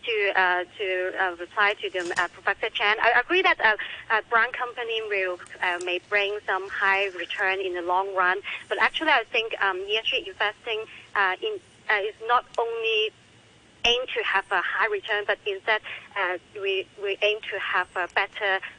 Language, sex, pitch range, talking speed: English, male, 190-235 Hz, 180 wpm